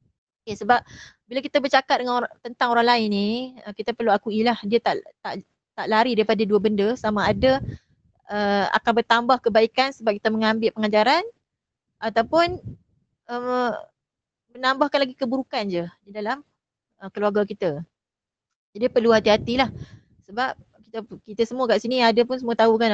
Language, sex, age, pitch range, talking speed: Malay, female, 20-39, 210-250 Hz, 150 wpm